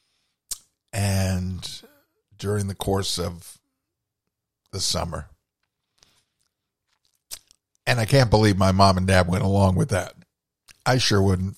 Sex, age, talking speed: male, 50-69, 115 wpm